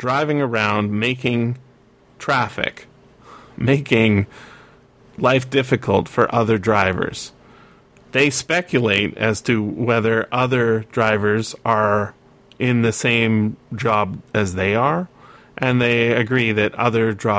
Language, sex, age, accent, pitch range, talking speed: English, male, 30-49, American, 110-135 Hz, 105 wpm